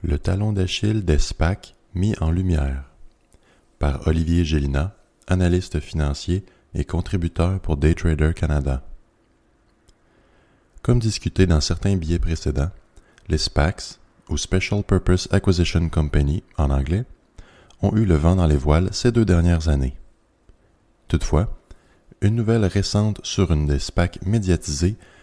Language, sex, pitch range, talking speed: French, male, 80-105 Hz, 130 wpm